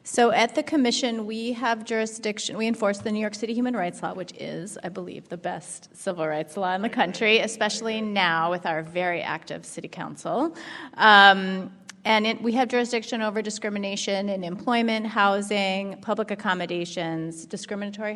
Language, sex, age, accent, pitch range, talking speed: English, female, 30-49, American, 180-225 Hz, 160 wpm